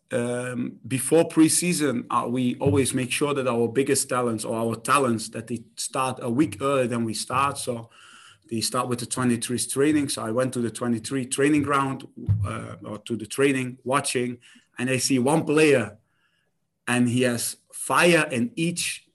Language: English